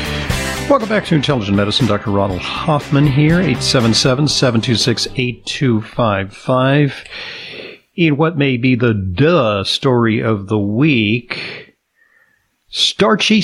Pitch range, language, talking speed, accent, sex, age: 110-150 Hz, English, 95 wpm, American, male, 50-69